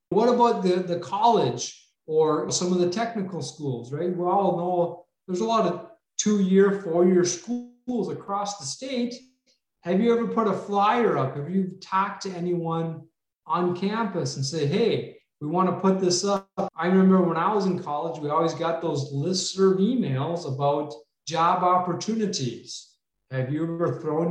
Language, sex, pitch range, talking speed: English, male, 145-190 Hz, 170 wpm